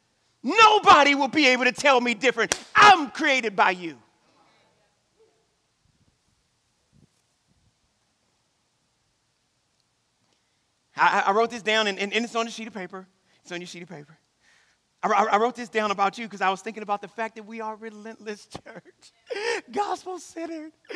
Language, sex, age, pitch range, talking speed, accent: English, male, 40-59, 200-250 Hz, 150 wpm, American